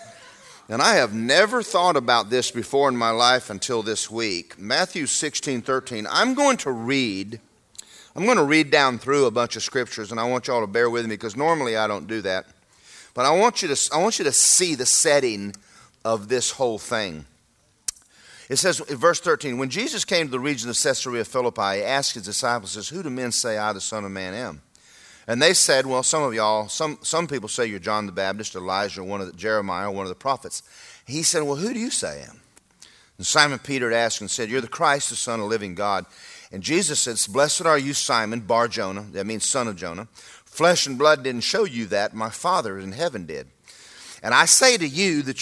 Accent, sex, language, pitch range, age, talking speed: American, male, English, 105-135 Hz, 40-59, 225 wpm